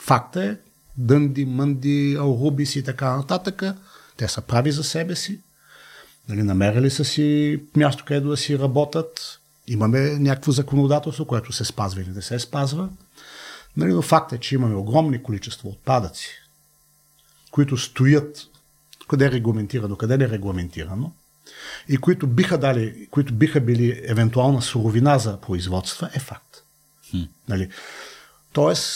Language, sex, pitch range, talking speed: Bulgarian, male, 105-150 Hz, 135 wpm